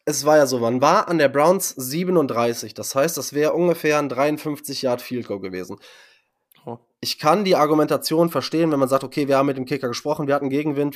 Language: German